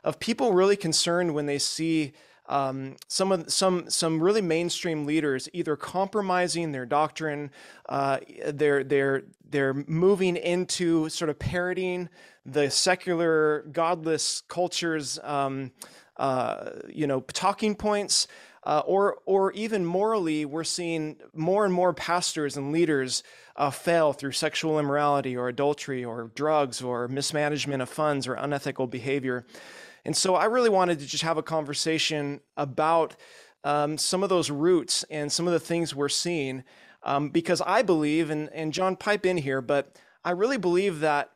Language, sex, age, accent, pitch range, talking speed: English, male, 20-39, American, 145-175 Hz, 150 wpm